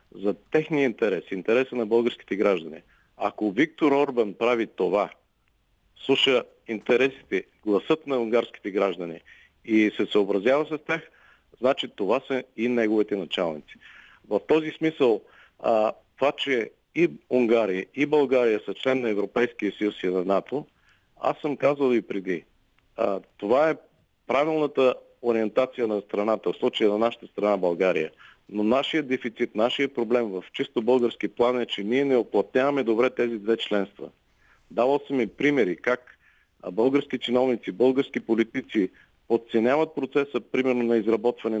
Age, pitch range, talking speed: 50-69, 110-135 Hz, 135 wpm